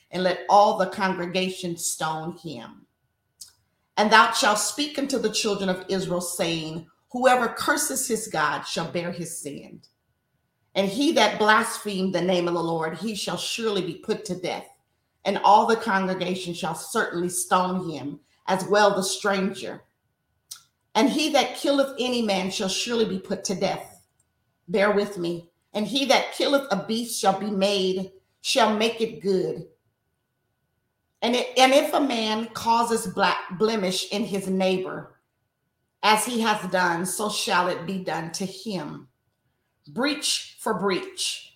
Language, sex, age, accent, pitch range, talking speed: English, female, 40-59, American, 180-225 Hz, 155 wpm